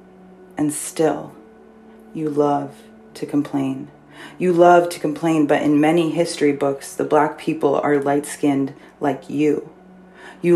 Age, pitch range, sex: 30-49, 145-160 Hz, female